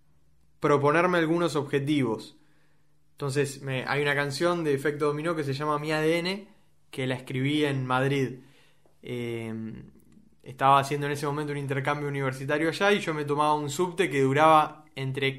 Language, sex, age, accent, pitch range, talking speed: Spanish, male, 20-39, Argentinian, 135-170 Hz, 150 wpm